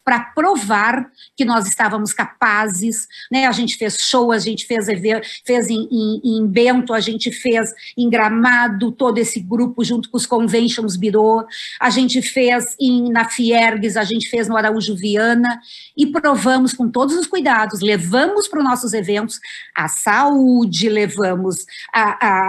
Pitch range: 220-265 Hz